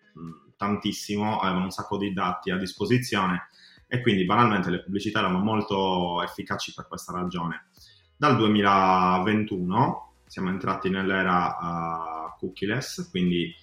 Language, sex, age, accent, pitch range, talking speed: Italian, male, 20-39, native, 90-100 Hz, 125 wpm